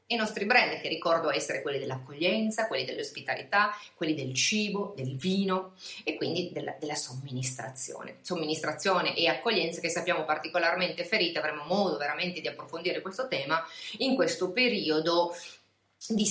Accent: native